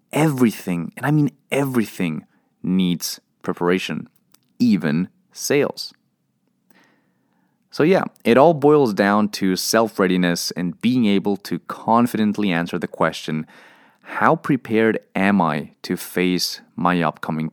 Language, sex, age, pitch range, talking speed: English, male, 30-49, 90-135 Hz, 115 wpm